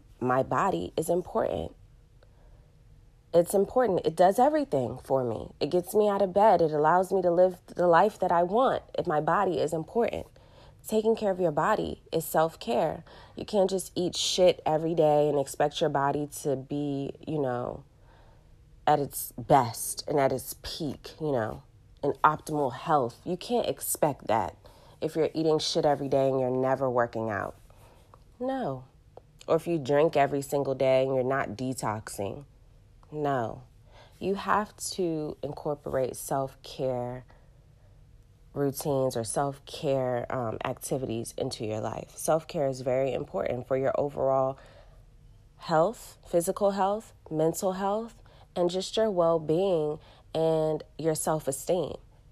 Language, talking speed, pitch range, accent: English, 145 wpm, 130-175 Hz, American